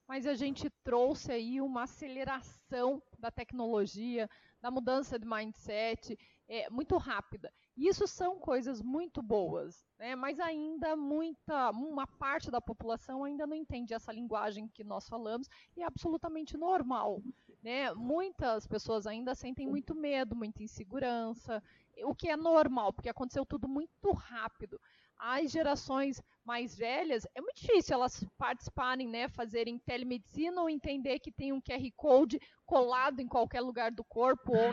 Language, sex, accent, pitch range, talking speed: Portuguese, female, Brazilian, 235-305 Hz, 145 wpm